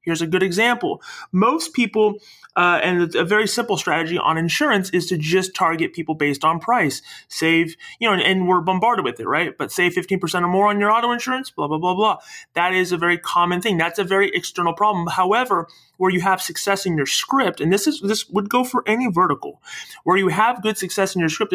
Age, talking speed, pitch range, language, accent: 30-49, 230 wpm, 165-205 Hz, English, American